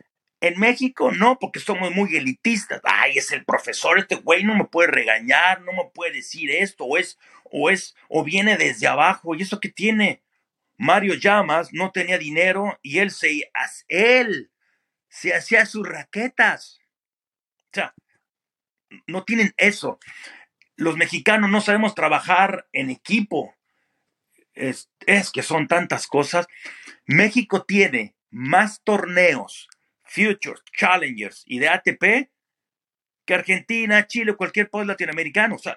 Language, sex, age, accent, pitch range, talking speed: Spanish, male, 40-59, Mexican, 175-220 Hz, 140 wpm